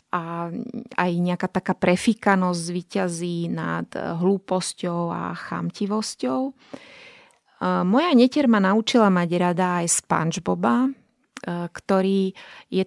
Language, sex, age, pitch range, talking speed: Slovak, female, 30-49, 170-215 Hz, 90 wpm